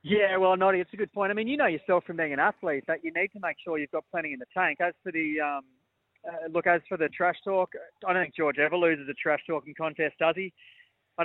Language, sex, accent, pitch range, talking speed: English, male, Australian, 155-180 Hz, 275 wpm